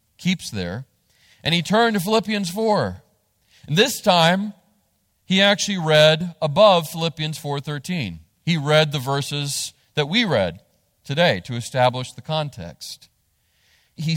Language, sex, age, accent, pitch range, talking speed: English, male, 40-59, American, 140-180 Hz, 125 wpm